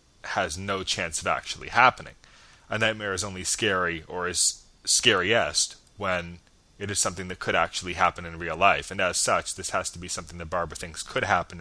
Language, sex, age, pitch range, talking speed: English, male, 30-49, 85-100 Hz, 195 wpm